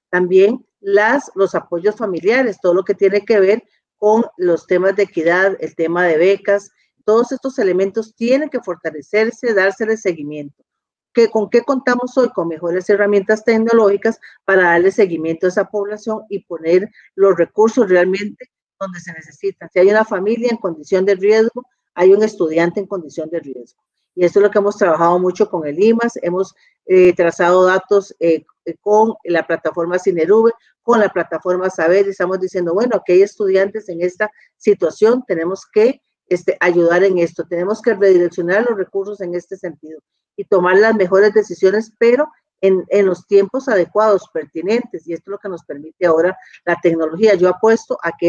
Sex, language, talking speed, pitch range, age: female, Spanish, 175 wpm, 175-215 Hz, 40-59